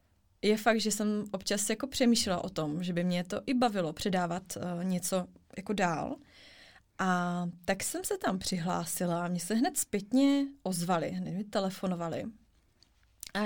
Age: 20-39